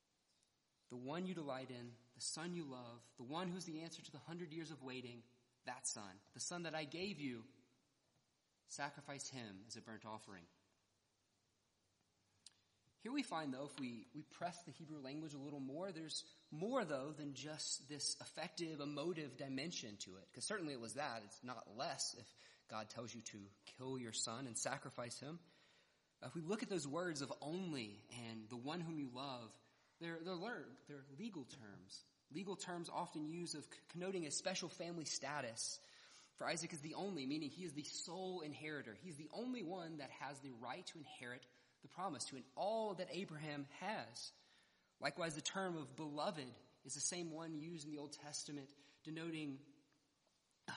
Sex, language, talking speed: male, English, 180 wpm